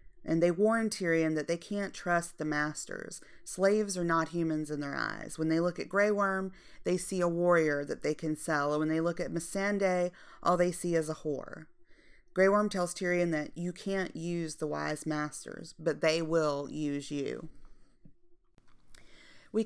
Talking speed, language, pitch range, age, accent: 185 wpm, English, 155-175 Hz, 30-49, American